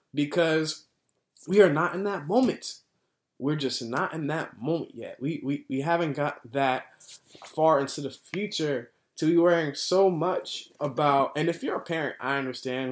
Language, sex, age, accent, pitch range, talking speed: English, male, 20-39, American, 130-155 Hz, 170 wpm